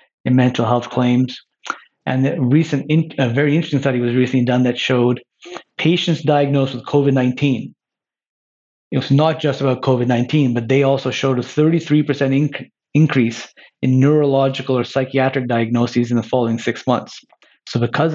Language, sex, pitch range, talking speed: English, male, 120-135 Hz, 160 wpm